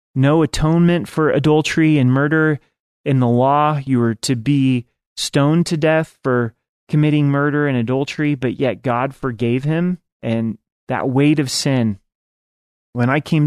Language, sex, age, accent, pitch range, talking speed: English, male, 30-49, American, 120-145 Hz, 150 wpm